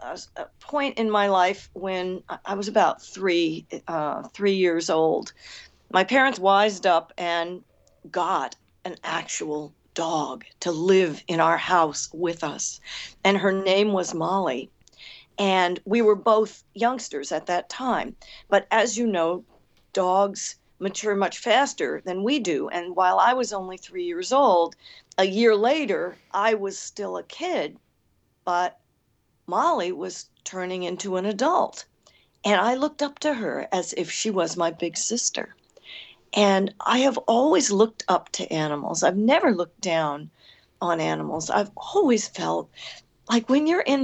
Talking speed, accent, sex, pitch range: 150 wpm, American, female, 175-255 Hz